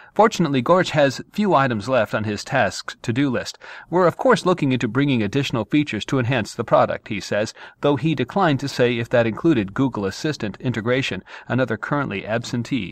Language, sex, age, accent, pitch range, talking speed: English, male, 40-59, American, 115-150 Hz, 180 wpm